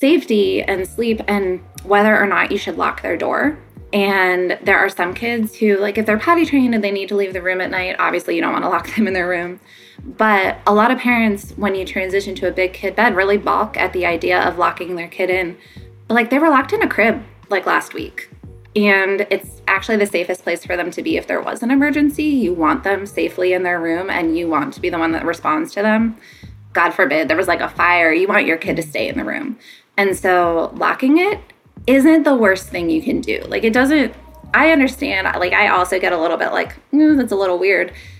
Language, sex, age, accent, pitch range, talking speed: English, female, 20-39, American, 185-245 Hz, 240 wpm